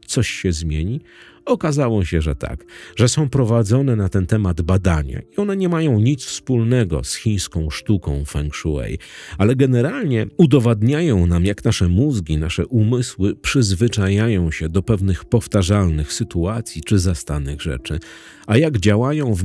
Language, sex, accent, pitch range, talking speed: Polish, male, native, 85-125 Hz, 145 wpm